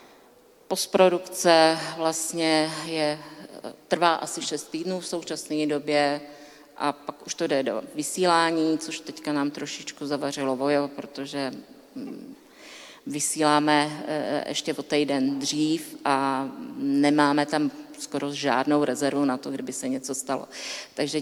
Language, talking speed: Czech, 115 wpm